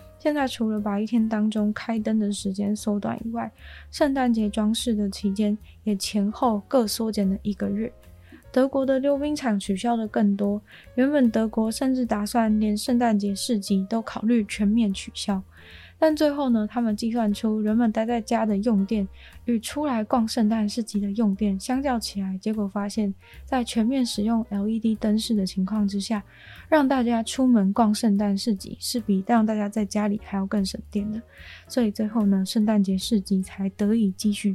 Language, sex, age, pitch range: Chinese, female, 20-39, 200-235 Hz